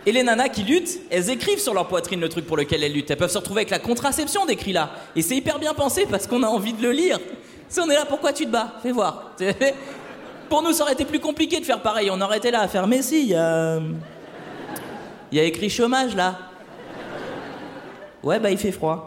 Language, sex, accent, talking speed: French, male, French, 250 wpm